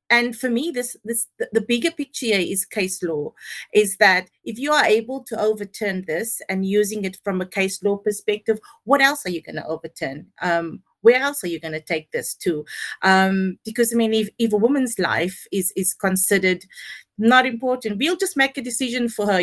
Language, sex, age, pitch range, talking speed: English, female, 30-49, 195-245 Hz, 200 wpm